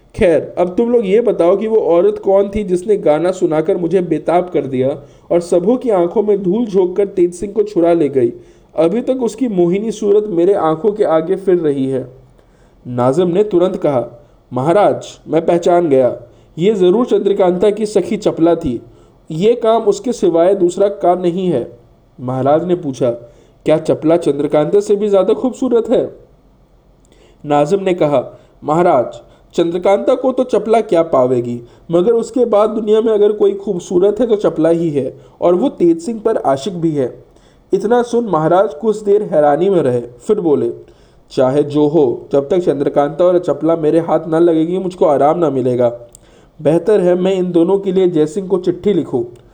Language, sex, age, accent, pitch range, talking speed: Hindi, male, 50-69, native, 150-205 Hz, 175 wpm